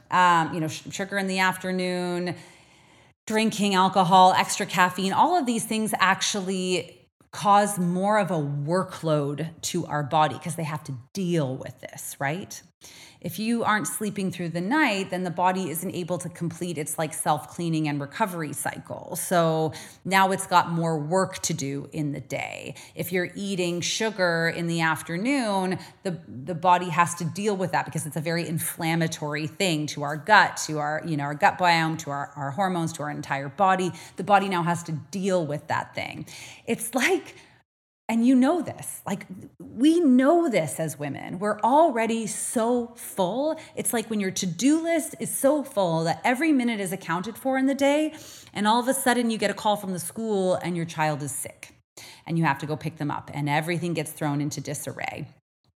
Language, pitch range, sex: English, 160-205 Hz, female